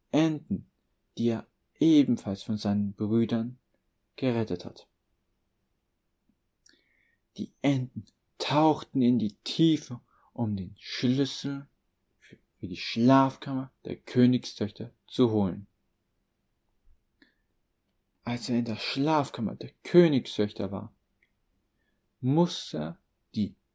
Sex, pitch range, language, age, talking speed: male, 105-135 Hz, German, 40-59, 90 wpm